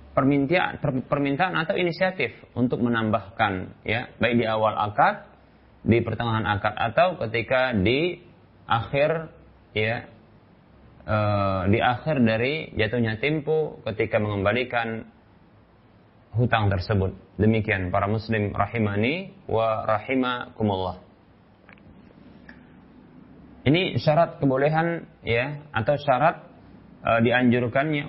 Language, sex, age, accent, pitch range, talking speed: Indonesian, male, 30-49, native, 105-130 Hz, 90 wpm